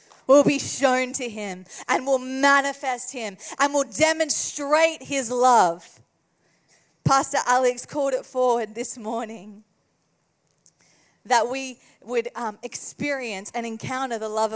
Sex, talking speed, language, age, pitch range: female, 125 wpm, English, 30-49, 190-245 Hz